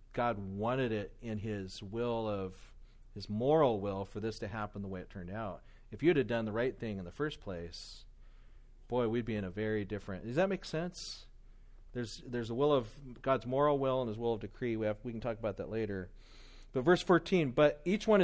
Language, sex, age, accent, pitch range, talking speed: English, male, 40-59, American, 110-145 Hz, 225 wpm